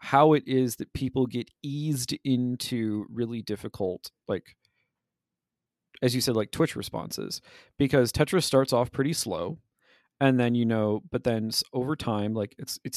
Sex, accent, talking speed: male, American, 155 wpm